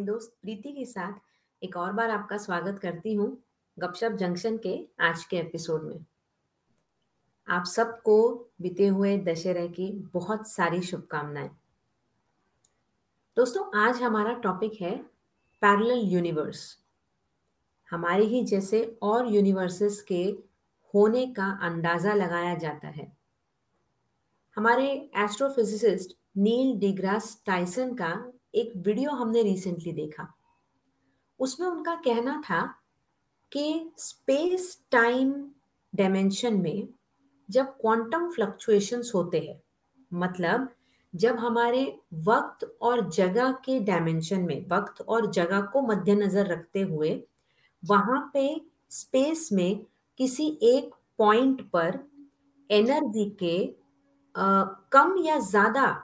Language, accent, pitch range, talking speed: Hindi, native, 185-250 Hz, 105 wpm